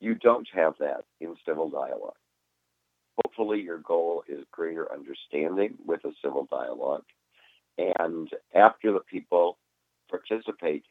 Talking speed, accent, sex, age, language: 120 wpm, American, male, 50-69, English